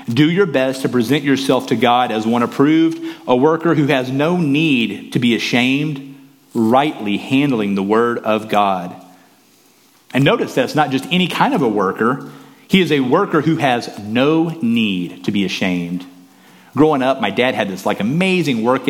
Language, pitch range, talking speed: English, 115-155 Hz, 180 wpm